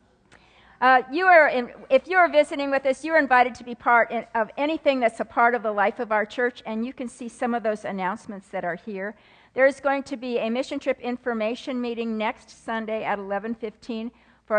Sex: female